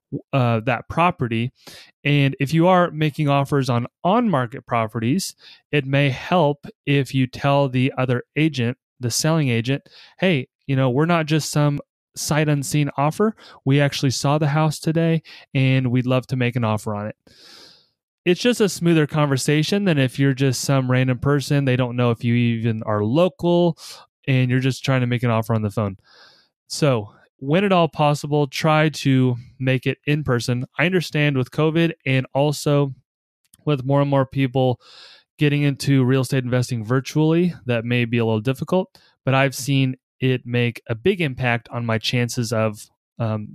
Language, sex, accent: English, male, American